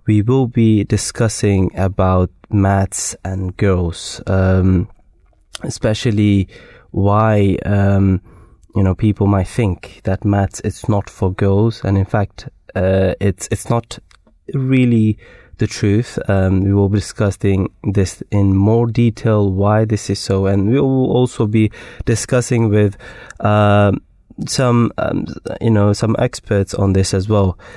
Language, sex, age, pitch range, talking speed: English, male, 20-39, 95-110 Hz, 140 wpm